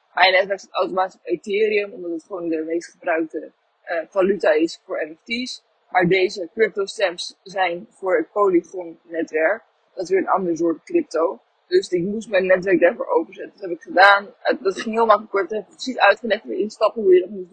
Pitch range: 185-225 Hz